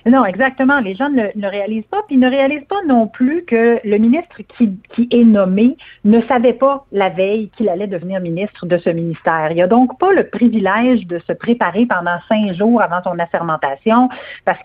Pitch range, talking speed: 180-240 Hz, 205 wpm